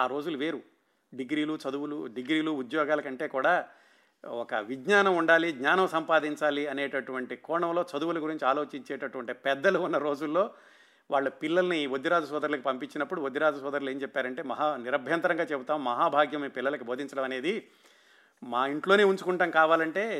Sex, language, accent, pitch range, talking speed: male, Telugu, native, 140-170 Hz, 125 wpm